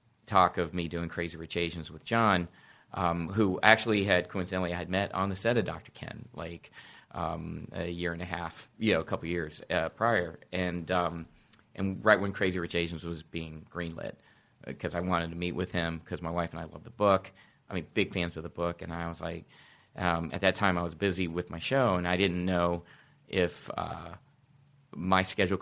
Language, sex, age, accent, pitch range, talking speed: English, male, 30-49, American, 85-110 Hz, 215 wpm